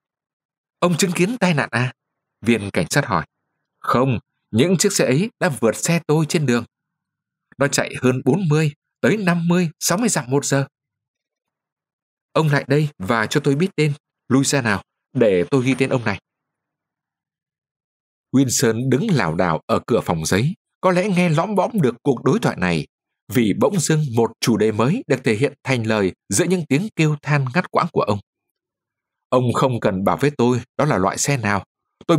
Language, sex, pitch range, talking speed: Vietnamese, male, 125-170 Hz, 185 wpm